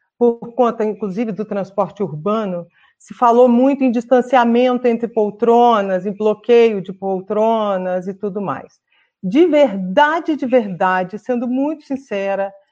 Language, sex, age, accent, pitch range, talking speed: Portuguese, female, 40-59, Brazilian, 200-260 Hz, 125 wpm